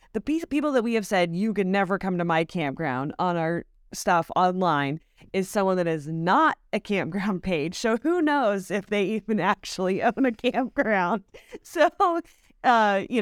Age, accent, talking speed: 30-49, American, 170 wpm